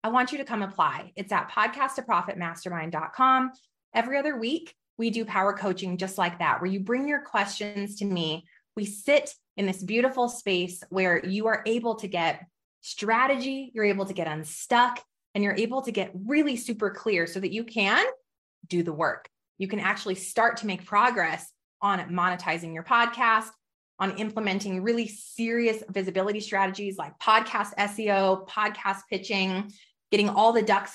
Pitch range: 185-230 Hz